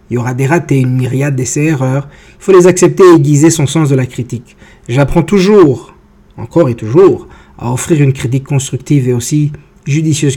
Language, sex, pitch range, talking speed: English, male, 125-150 Hz, 205 wpm